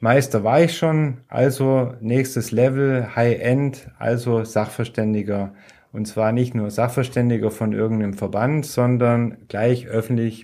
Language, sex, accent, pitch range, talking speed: German, male, German, 115-135 Hz, 120 wpm